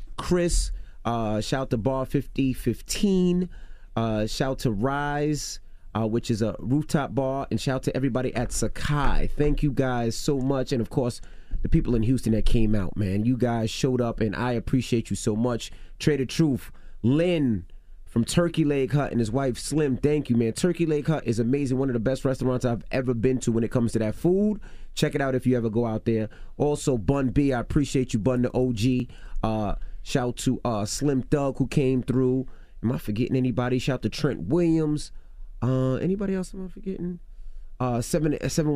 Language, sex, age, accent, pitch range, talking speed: English, male, 30-49, American, 110-140 Hz, 200 wpm